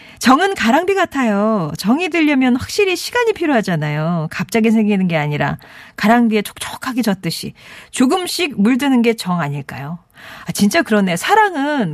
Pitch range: 185-290 Hz